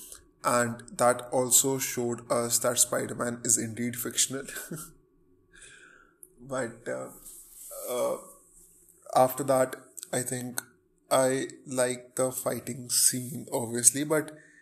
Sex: male